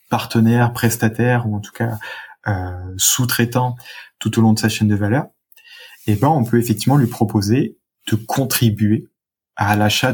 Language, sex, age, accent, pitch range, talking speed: French, male, 20-39, French, 105-120 Hz, 160 wpm